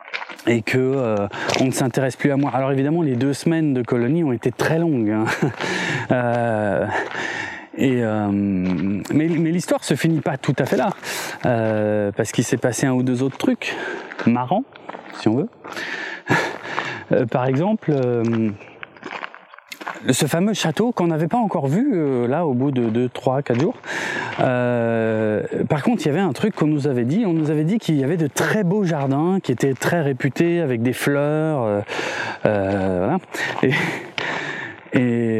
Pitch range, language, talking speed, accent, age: 120-160 Hz, French, 175 wpm, French, 20-39